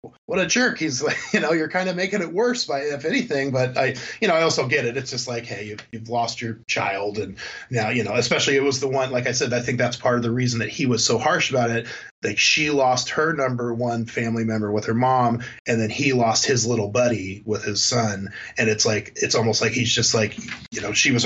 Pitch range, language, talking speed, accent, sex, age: 110-135 Hz, English, 265 wpm, American, male, 20-39